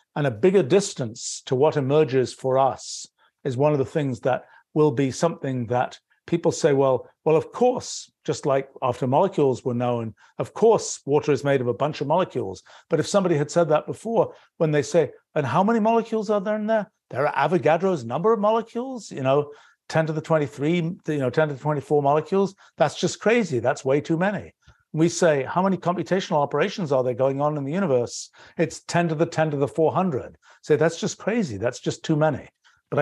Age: 50-69